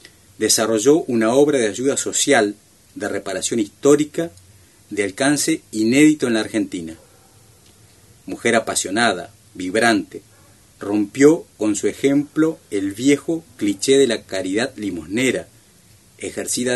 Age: 40-59